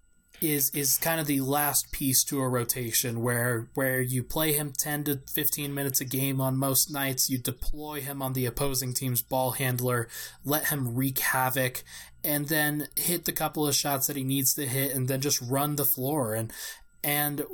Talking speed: 195 wpm